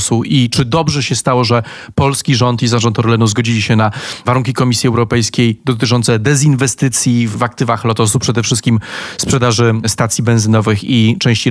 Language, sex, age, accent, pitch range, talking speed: Polish, male, 30-49, native, 120-145 Hz, 150 wpm